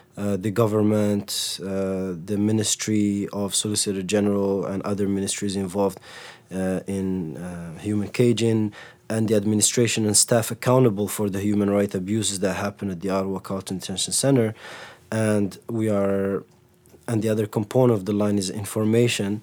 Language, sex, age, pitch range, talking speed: English, male, 20-39, 100-115 Hz, 150 wpm